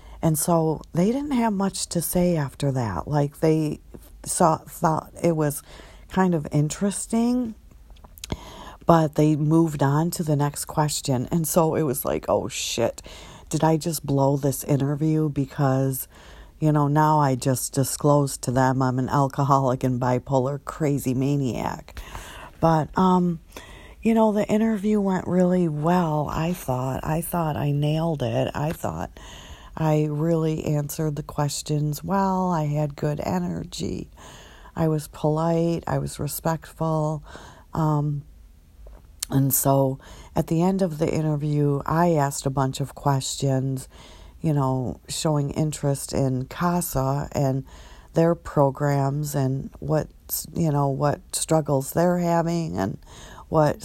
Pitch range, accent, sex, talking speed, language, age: 135-165 Hz, American, female, 140 wpm, English, 50-69